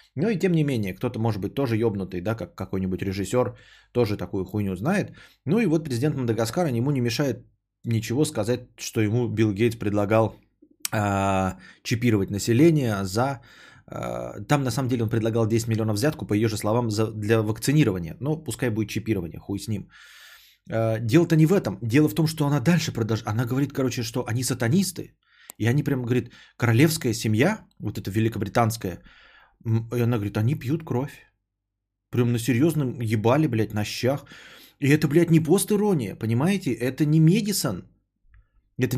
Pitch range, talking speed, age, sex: 110-150 Hz, 170 wpm, 20-39, male